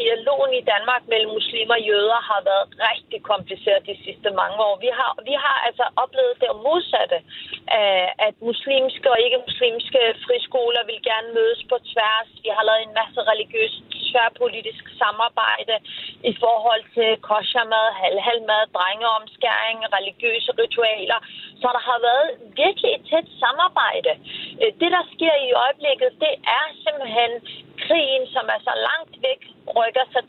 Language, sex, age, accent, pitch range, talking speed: Danish, female, 30-49, native, 225-330 Hz, 145 wpm